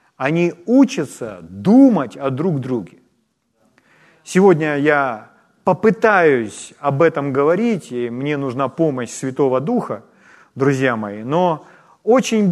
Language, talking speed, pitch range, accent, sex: Ukrainian, 105 wpm, 150-205 Hz, native, male